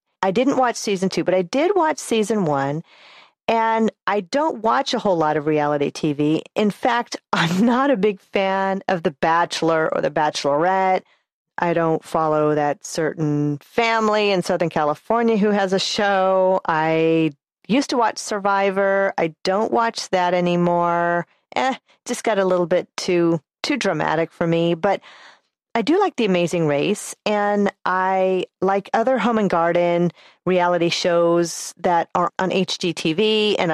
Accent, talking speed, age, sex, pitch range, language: American, 160 wpm, 40-59, female, 160-210 Hz, English